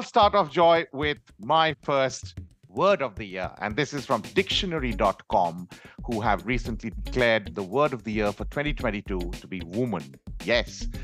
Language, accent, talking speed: English, Indian, 165 wpm